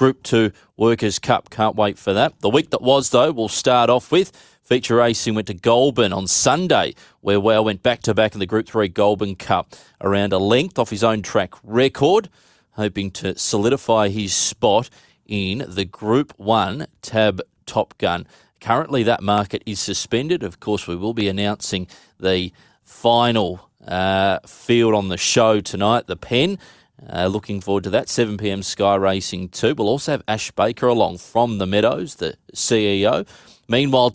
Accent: Australian